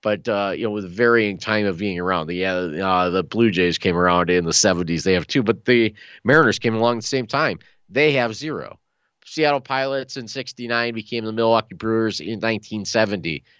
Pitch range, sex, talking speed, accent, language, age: 95-115 Hz, male, 200 wpm, American, English, 30-49